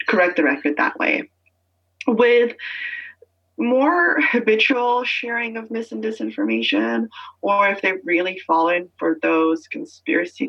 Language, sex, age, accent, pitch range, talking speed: English, female, 20-39, American, 165-245 Hz, 110 wpm